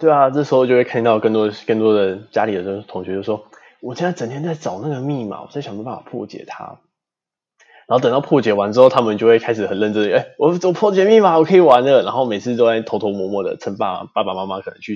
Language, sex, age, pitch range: Chinese, male, 20-39, 100-125 Hz